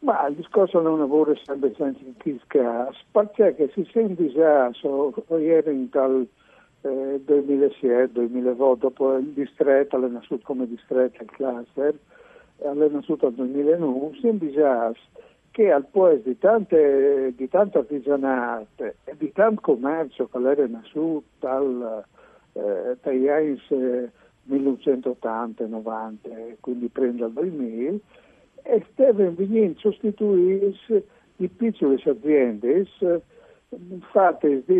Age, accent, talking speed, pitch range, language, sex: 60-79, native, 120 wpm, 130-195 Hz, Italian, male